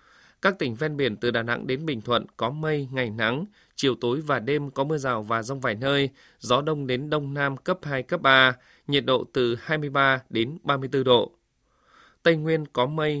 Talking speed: 205 wpm